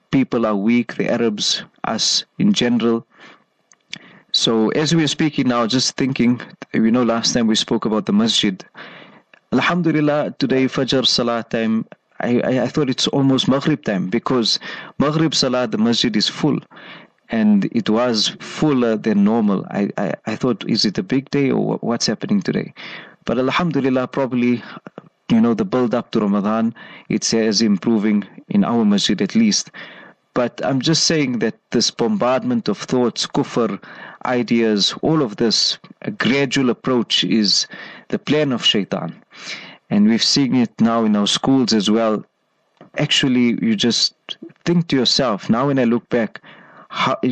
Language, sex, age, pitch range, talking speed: English, male, 30-49, 115-160 Hz, 160 wpm